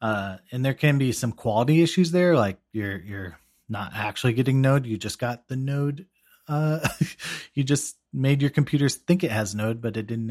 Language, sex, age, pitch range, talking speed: English, male, 30-49, 105-145 Hz, 200 wpm